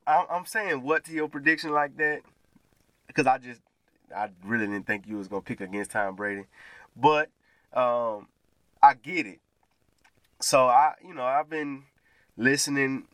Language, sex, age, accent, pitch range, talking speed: English, male, 20-39, American, 115-145 Hz, 155 wpm